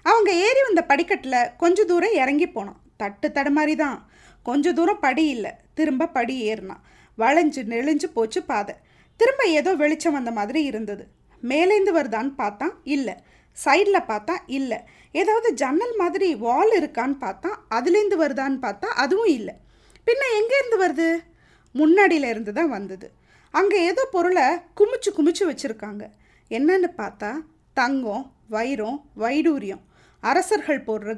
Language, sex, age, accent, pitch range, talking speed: Tamil, female, 20-39, native, 245-370 Hz, 130 wpm